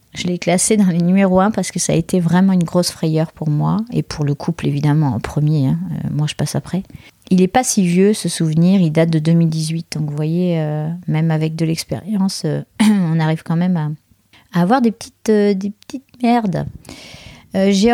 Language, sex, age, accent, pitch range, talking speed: French, female, 30-49, French, 160-200 Hz, 215 wpm